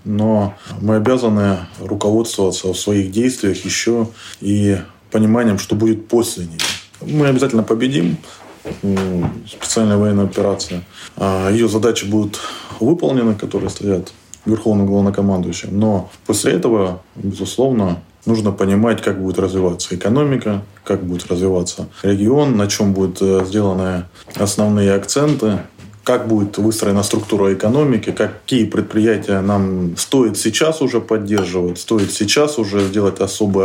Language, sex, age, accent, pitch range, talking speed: Russian, male, 20-39, native, 95-110 Hz, 115 wpm